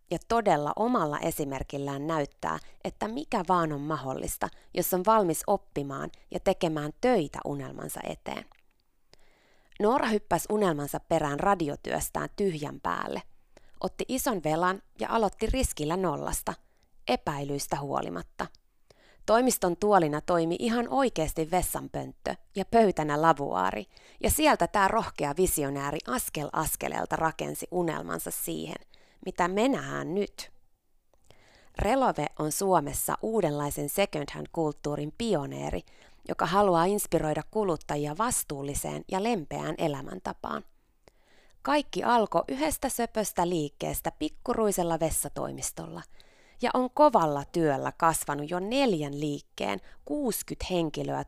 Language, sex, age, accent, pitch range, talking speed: Finnish, female, 20-39, native, 145-210 Hz, 105 wpm